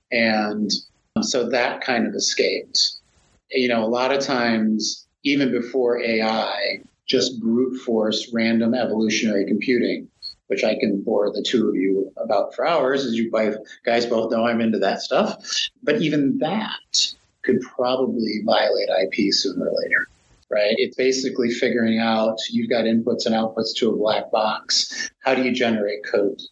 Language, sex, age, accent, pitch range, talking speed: English, male, 30-49, American, 115-130 Hz, 160 wpm